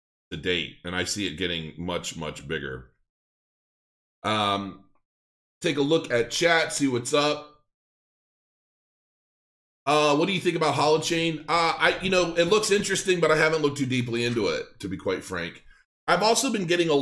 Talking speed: 175 wpm